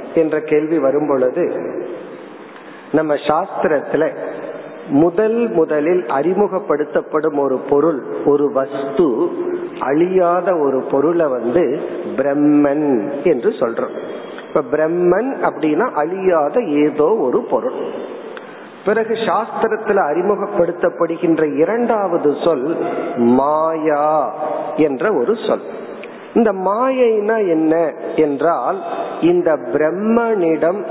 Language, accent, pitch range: Tamil, native, 150-230 Hz